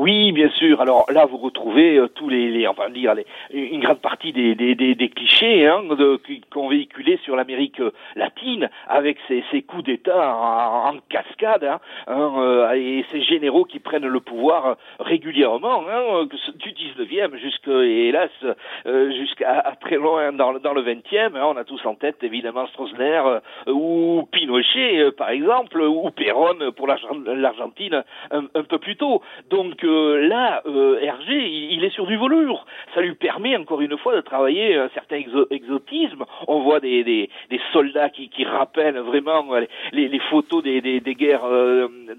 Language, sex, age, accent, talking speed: French, male, 50-69, French, 185 wpm